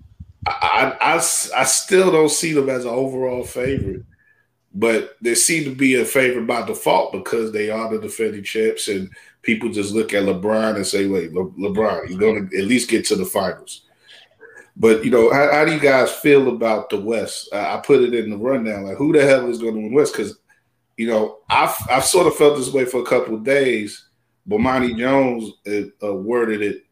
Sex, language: male, English